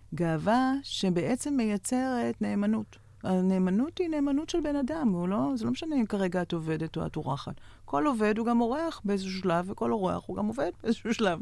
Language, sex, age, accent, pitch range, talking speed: Hebrew, female, 40-59, native, 150-195 Hz, 185 wpm